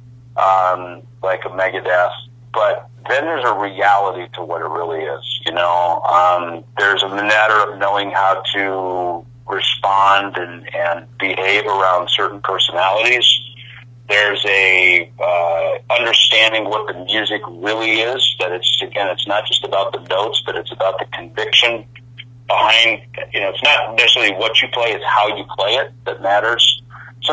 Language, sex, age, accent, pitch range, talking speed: English, male, 40-59, American, 95-120 Hz, 155 wpm